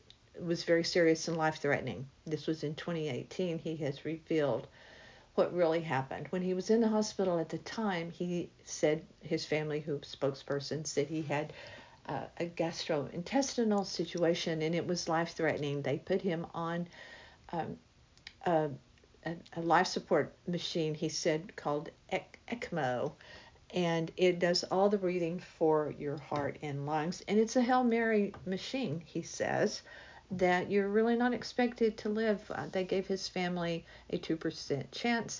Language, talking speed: English, 155 wpm